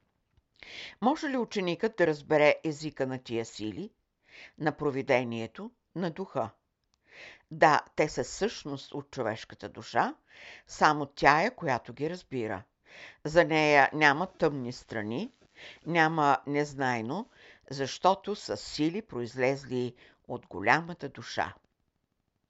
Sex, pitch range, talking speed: female, 130-175 Hz, 105 wpm